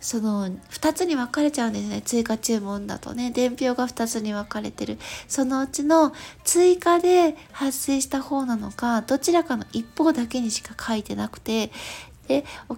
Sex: female